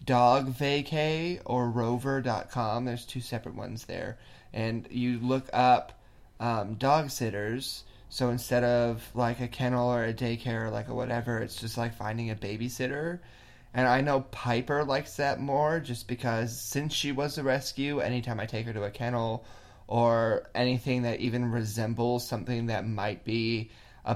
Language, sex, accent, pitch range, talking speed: English, male, American, 115-125 Hz, 160 wpm